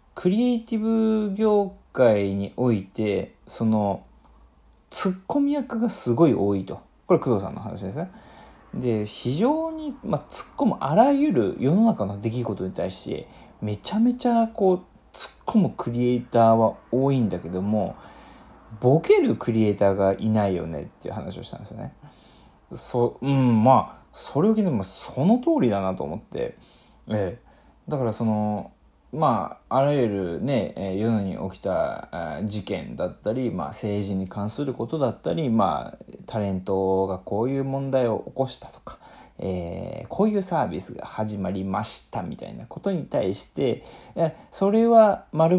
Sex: male